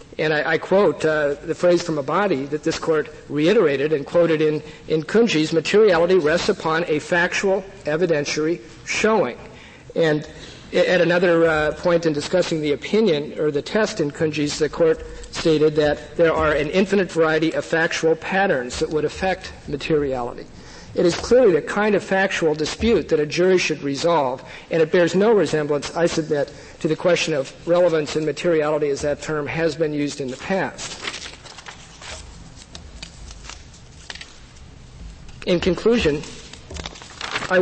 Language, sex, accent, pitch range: English, male, American, 150-175 Hz